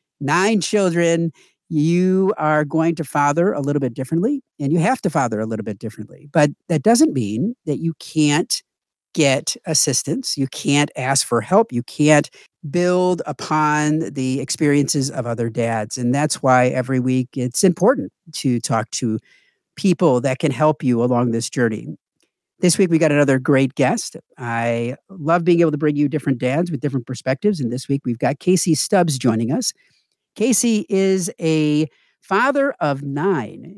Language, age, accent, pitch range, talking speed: English, 50-69, American, 130-175 Hz, 170 wpm